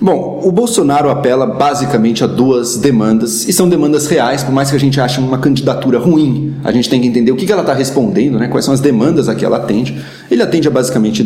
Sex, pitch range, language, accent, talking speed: male, 120-150 Hz, Portuguese, Brazilian, 235 wpm